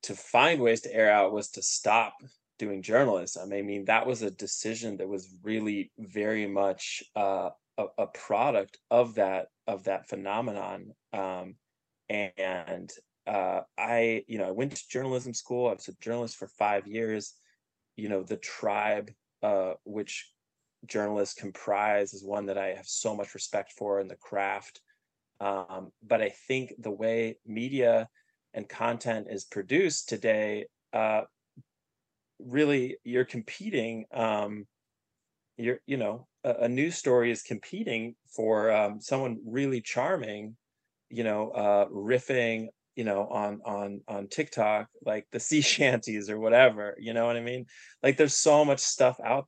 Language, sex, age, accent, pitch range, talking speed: English, male, 20-39, American, 105-125 Hz, 155 wpm